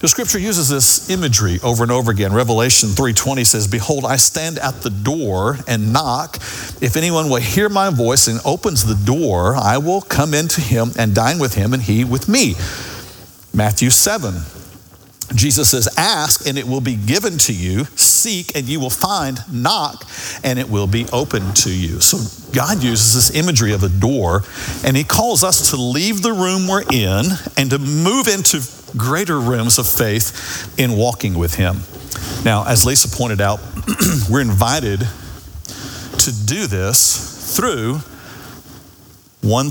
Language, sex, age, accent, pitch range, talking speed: English, male, 50-69, American, 105-135 Hz, 165 wpm